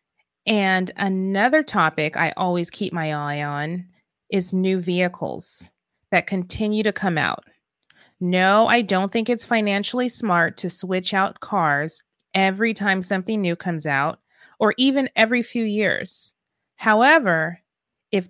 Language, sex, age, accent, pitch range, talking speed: English, female, 30-49, American, 175-220 Hz, 135 wpm